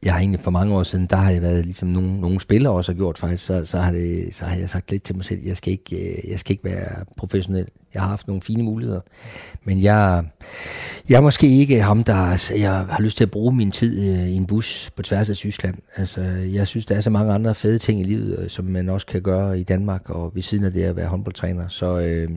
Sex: male